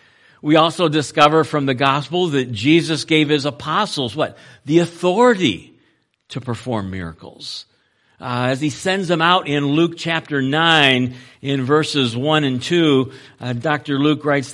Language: English